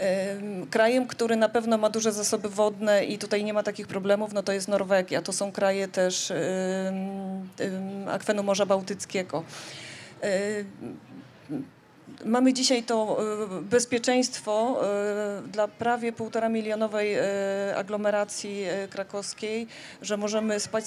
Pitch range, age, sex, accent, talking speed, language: 200-220 Hz, 40-59, female, native, 110 wpm, Polish